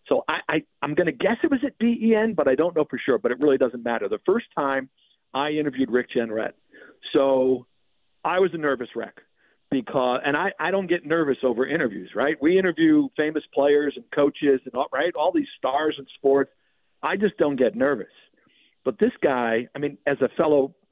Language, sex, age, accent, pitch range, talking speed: English, male, 50-69, American, 130-170 Hz, 205 wpm